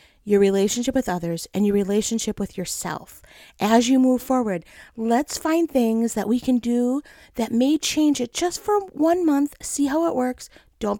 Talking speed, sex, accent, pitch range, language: 180 wpm, female, American, 215-295 Hz, English